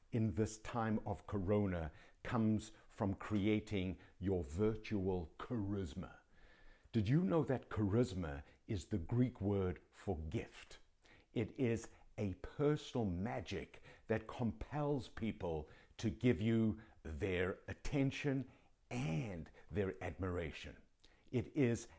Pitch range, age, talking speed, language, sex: 95-140 Hz, 60-79, 105 wpm, English, male